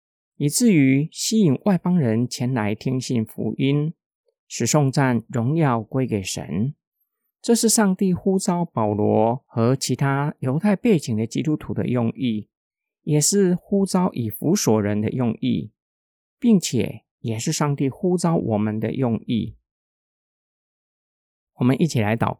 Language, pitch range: Chinese, 110-155 Hz